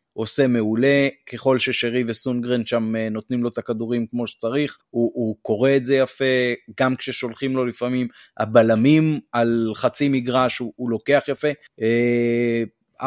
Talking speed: 140 wpm